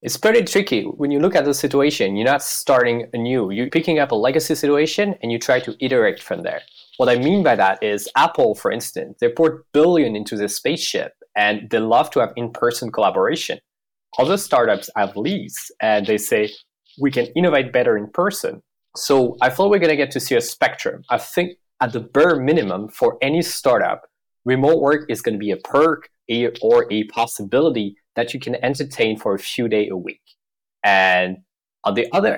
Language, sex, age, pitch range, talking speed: English, male, 20-39, 115-165 Hz, 195 wpm